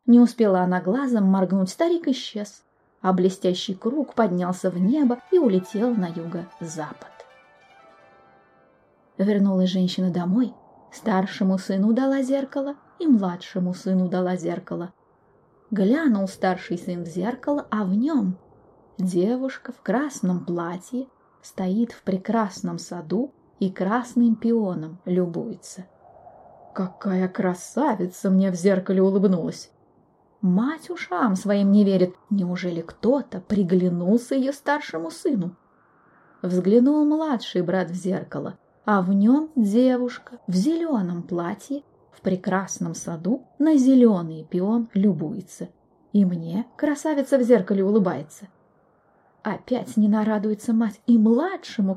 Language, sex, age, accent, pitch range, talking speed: Russian, female, 20-39, native, 185-240 Hz, 110 wpm